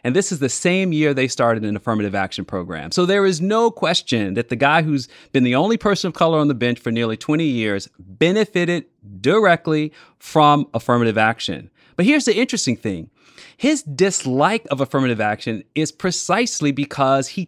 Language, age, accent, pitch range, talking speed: English, 30-49, American, 125-185 Hz, 180 wpm